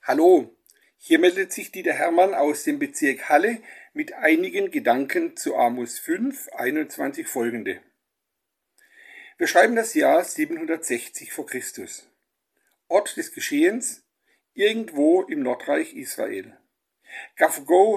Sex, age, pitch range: male, 50-69, 300-365 Hz